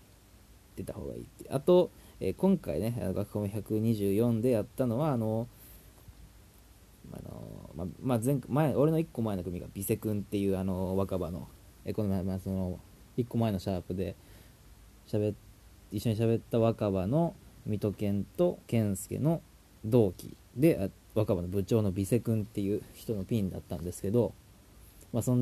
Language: Japanese